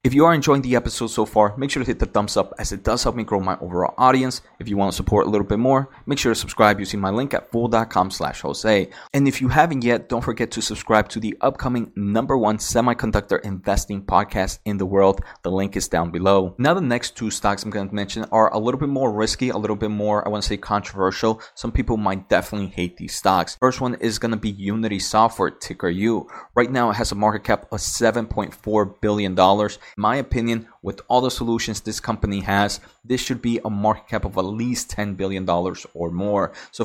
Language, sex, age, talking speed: English, male, 20-39, 235 wpm